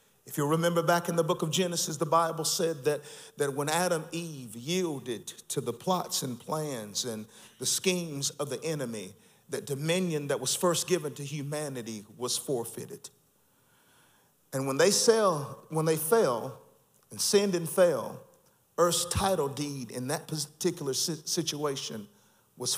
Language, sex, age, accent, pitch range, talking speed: English, male, 50-69, American, 145-190 Hz, 150 wpm